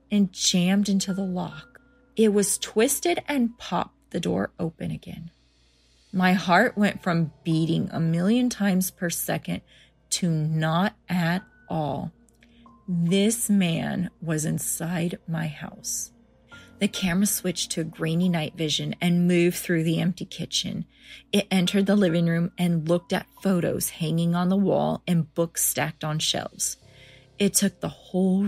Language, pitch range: English, 165-205 Hz